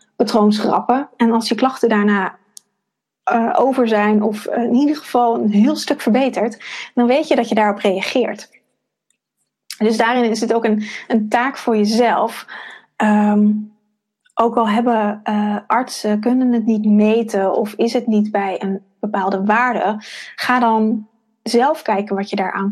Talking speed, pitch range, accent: 160 wpm, 210-240 Hz, Dutch